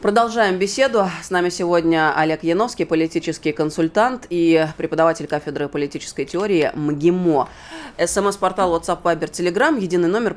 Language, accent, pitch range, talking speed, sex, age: Russian, native, 145-180 Hz, 120 wpm, female, 20-39